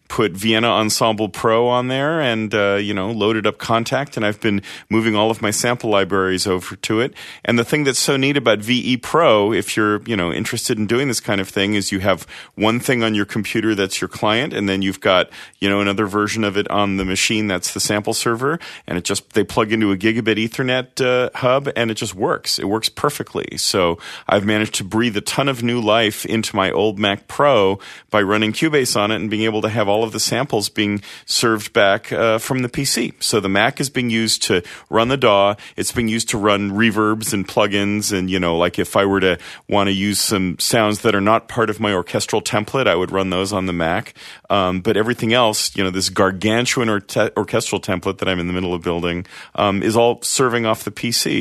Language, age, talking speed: English, 40-59, 235 wpm